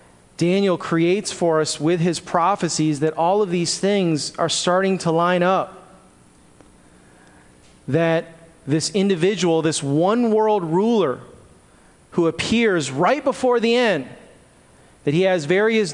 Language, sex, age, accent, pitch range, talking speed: English, male, 30-49, American, 165-210 Hz, 130 wpm